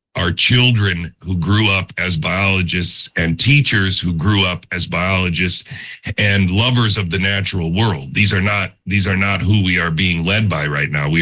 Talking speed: 185 wpm